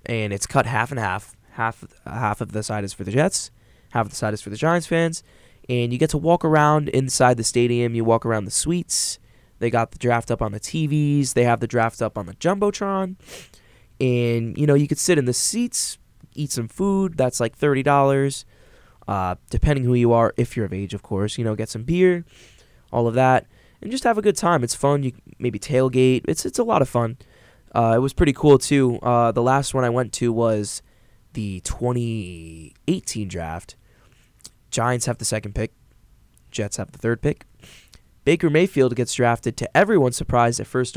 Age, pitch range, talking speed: 20-39, 110-135 Hz, 205 wpm